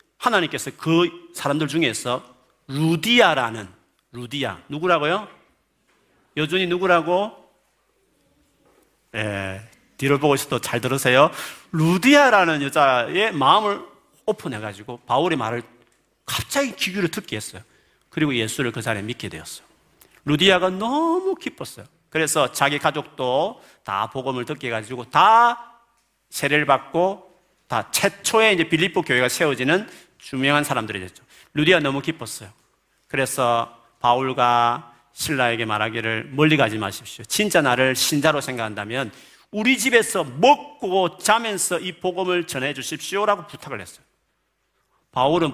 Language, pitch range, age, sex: Korean, 120-185 Hz, 40-59, male